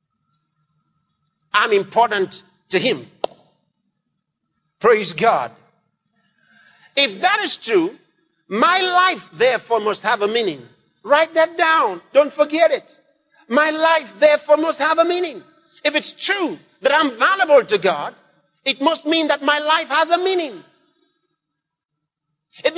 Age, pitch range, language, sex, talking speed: 50-69, 245-330 Hz, English, male, 125 wpm